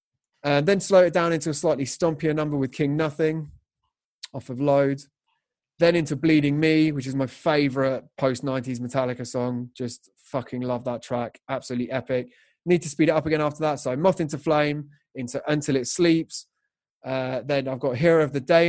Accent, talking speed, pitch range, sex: British, 190 wpm, 130-155 Hz, male